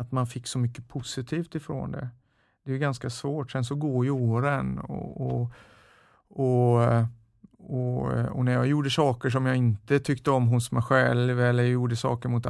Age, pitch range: 50-69, 110-130 Hz